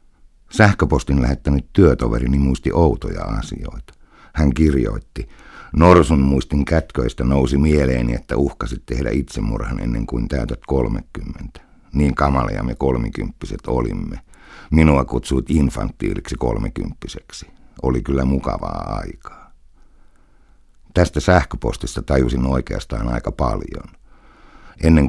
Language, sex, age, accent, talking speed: Finnish, male, 60-79, native, 100 wpm